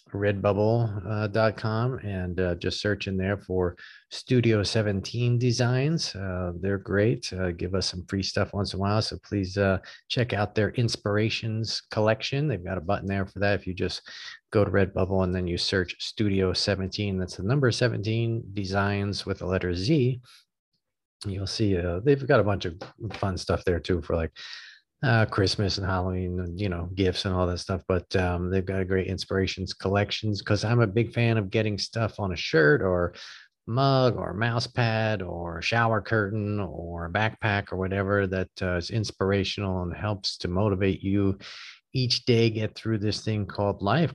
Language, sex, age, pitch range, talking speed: English, male, 40-59, 95-110 Hz, 185 wpm